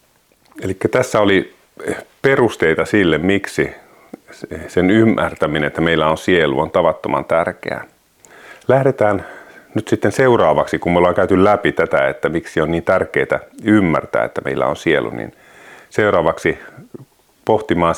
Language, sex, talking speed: Finnish, male, 125 wpm